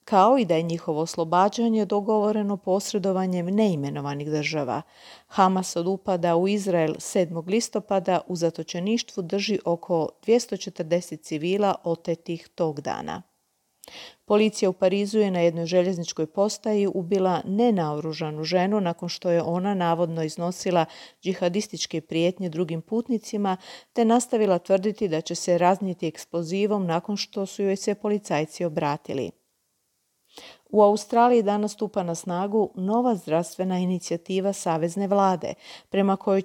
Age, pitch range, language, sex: 40-59, 170-210 Hz, Croatian, female